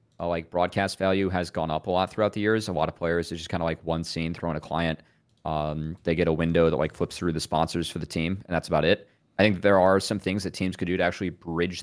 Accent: American